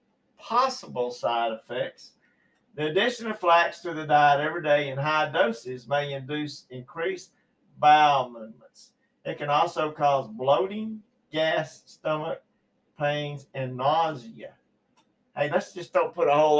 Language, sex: English, male